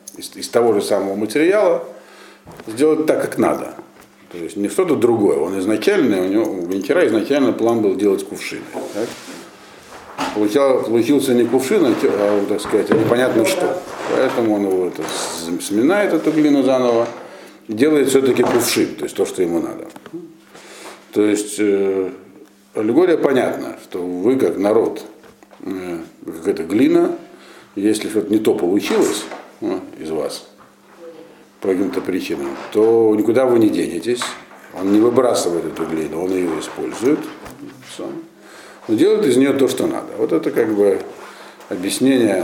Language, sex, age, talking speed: Russian, male, 50-69, 140 wpm